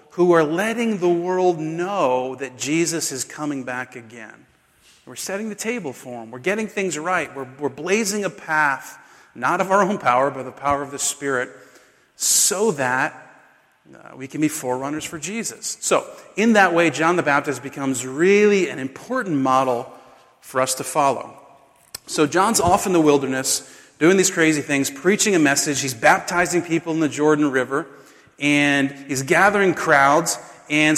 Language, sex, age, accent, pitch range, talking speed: English, male, 40-59, American, 135-180 Hz, 170 wpm